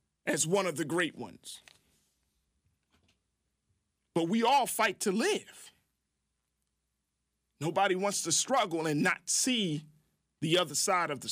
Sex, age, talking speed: male, 40-59, 125 wpm